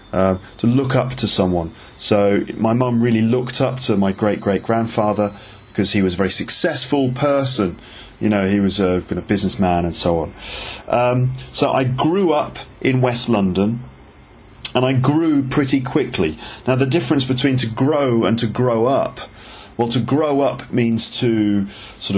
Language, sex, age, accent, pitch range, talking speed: English, male, 30-49, British, 100-125 Hz, 170 wpm